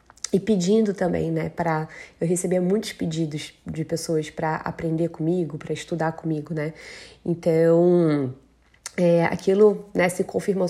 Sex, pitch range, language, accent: female, 165-200 Hz, Portuguese, Brazilian